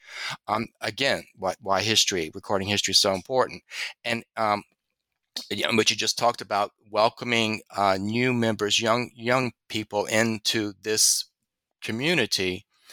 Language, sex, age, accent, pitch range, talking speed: English, male, 30-49, American, 100-120 Hz, 125 wpm